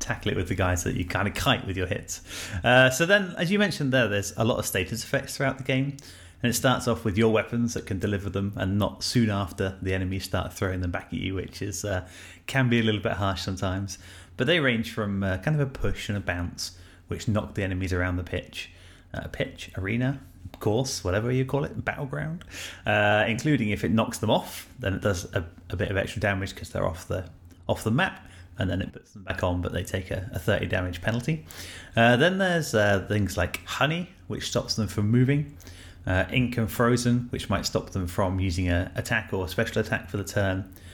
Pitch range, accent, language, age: 90-115 Hz, British, English, 30-49